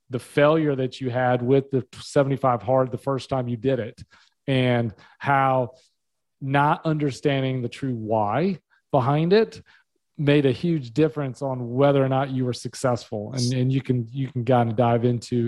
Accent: American